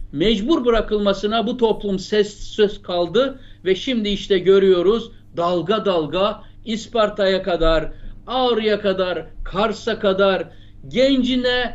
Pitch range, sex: 175-240 Hz, male